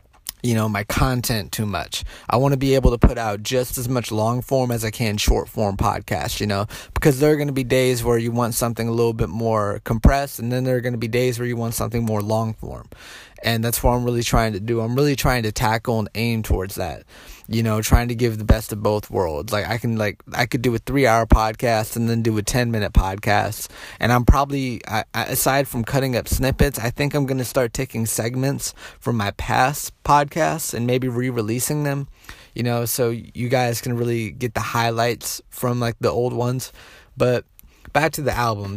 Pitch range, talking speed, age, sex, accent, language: 110-135 Hz, 225 wpm, 20-39, male, American, English